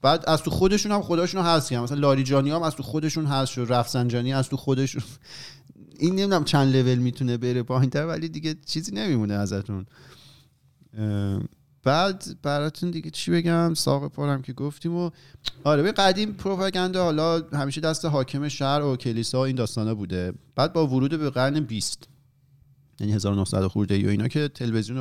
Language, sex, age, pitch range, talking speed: Persian, male, 30-49, 115-150 Hz, 170 wpm